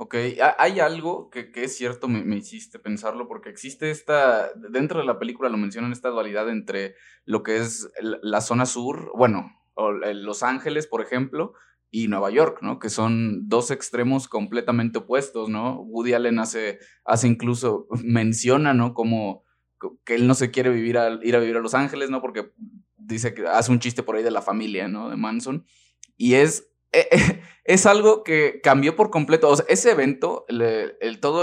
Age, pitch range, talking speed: 20-39, 115-145 Hz, 185 wpm